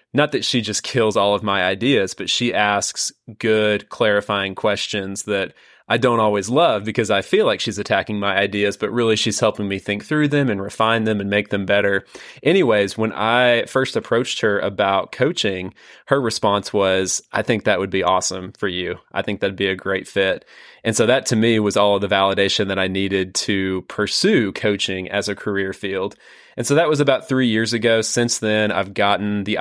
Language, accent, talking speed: English, American, 205 wpm